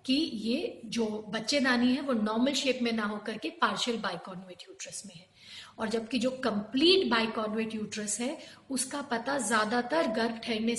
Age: 40-59